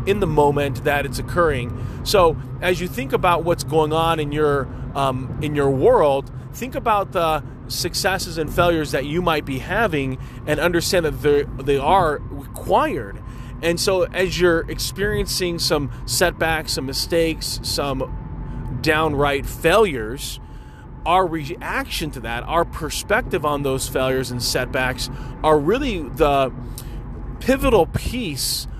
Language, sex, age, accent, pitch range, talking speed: English, male, 30-49, American, 125-170 Hz, 135 wpm